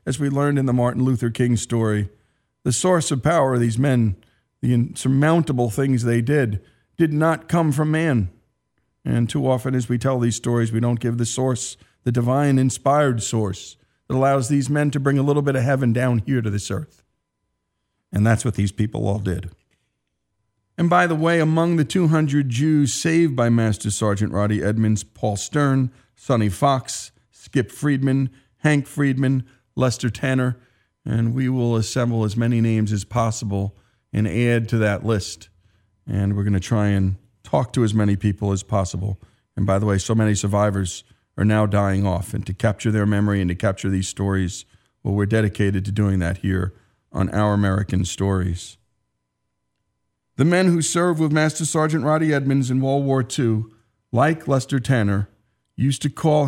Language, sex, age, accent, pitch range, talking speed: English, male, 50-69, American, 105-135 Hz, 175 wpm